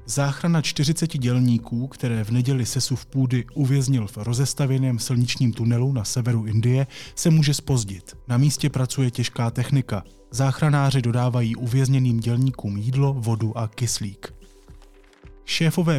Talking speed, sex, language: 130 wpm, male, Czech